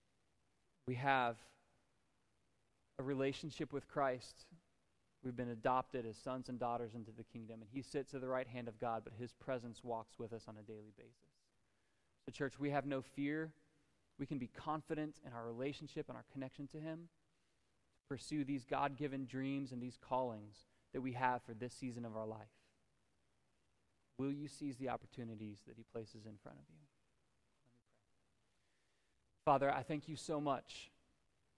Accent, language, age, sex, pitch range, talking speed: American, English, 20-39, male, 115-140 Hz, 165 wpm